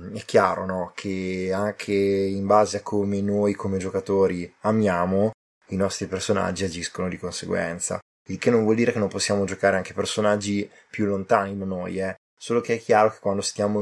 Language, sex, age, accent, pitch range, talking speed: Italian, male, 20-39, native, 95-105 Hz, 180 wpm